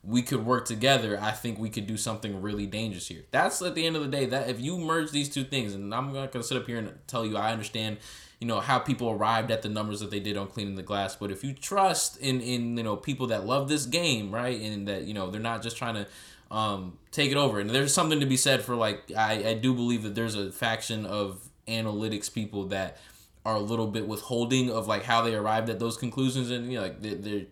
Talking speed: 260 wpm